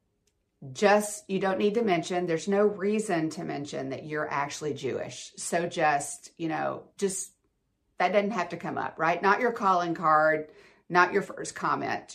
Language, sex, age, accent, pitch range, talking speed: English, female, 50-69, American, 165-215 Hz, 175 wpm